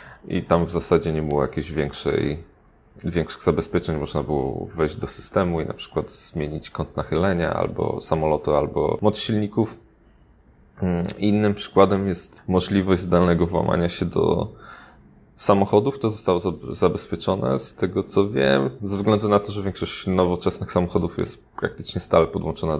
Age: 20-39